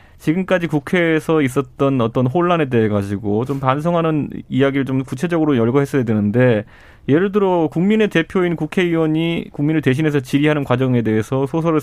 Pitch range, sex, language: 120-165 Hz, male, Korean